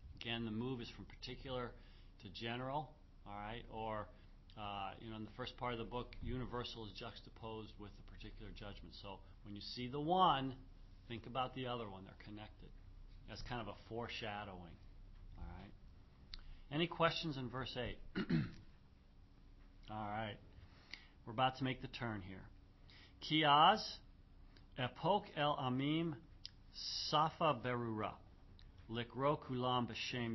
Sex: male